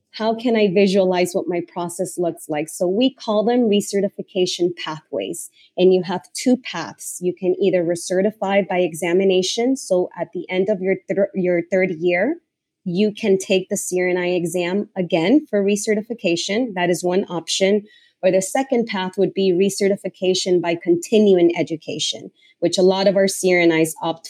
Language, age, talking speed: English, 20-39, 165 wpm